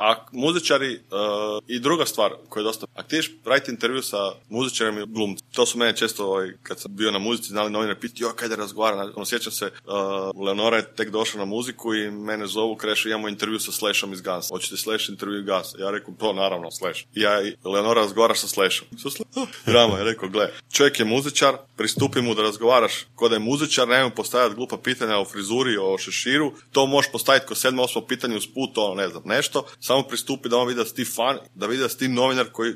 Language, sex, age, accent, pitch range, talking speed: Croatian, male, 20-39, native, 110-130 Hz, 215 wpm